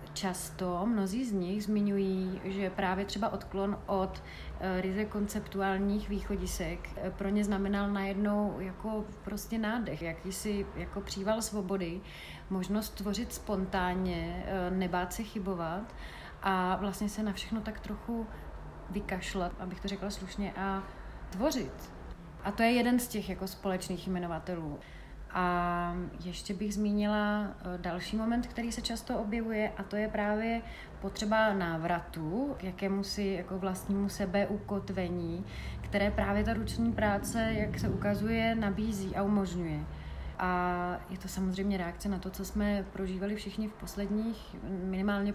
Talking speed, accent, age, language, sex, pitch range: 130 wpm, native, 30-49, Czech, female, 185-210 Hz